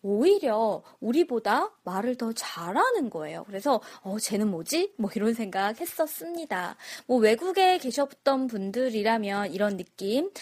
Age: 20-39